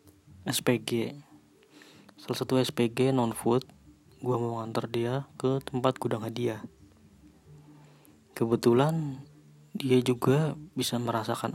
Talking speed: 100 wpm